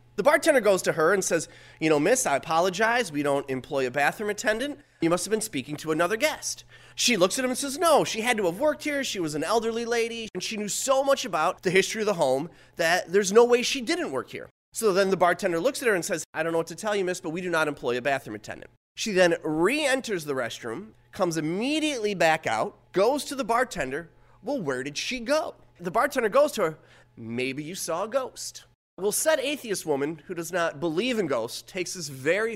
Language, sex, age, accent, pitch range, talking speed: English, male, 30-49, American, 155-235 Hz, 240 wpm